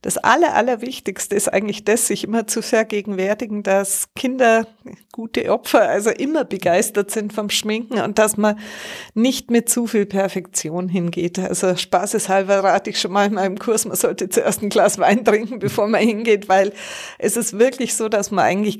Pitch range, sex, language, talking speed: 185-210 Hz, female, German, 180 wpm